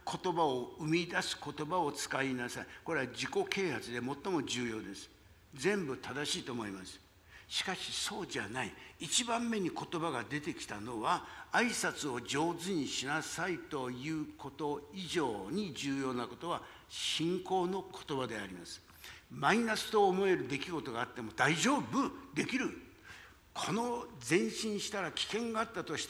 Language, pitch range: Japanese, 145-210 Hz